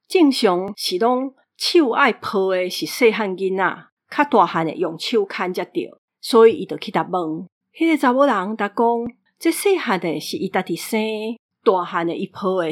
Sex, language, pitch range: female, Chinese, 180-235 Hz